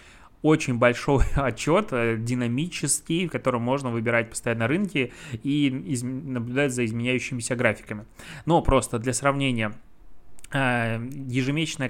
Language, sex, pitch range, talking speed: Russian, male, 120-140 Hz, 100 wpm